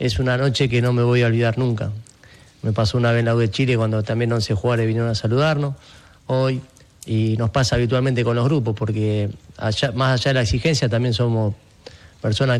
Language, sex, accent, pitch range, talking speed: Spanish, male, Argentinian, 110-130 Hz, 220 wpm